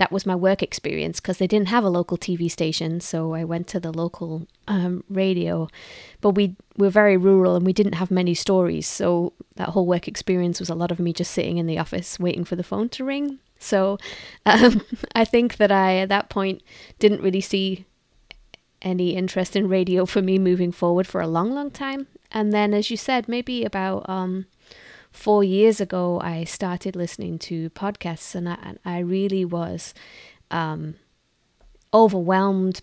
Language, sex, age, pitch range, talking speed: English, female, 20-39, 175-200 Hz, 185 wpm